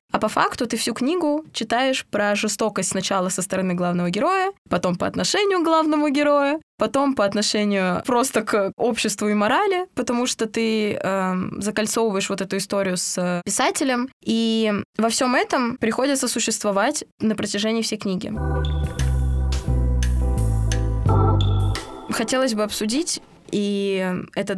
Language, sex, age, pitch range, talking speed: Russian, female, 20-39, 195-245 Hz, 130 wpm